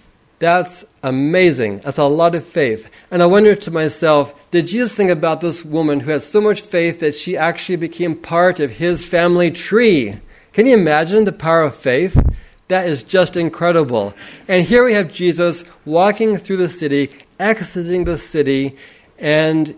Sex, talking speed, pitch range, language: male, 170 wpm, 145-190 Hz, English